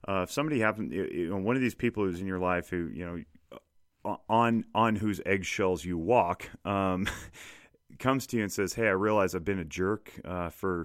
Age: 30-49